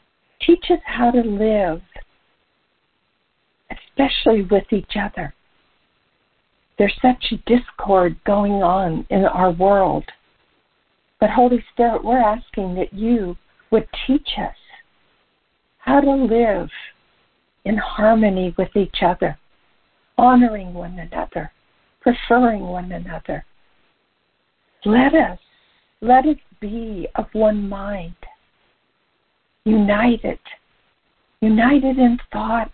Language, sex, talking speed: English, female, 95 wpm